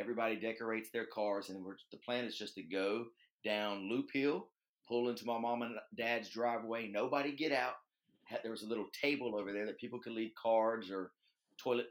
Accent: American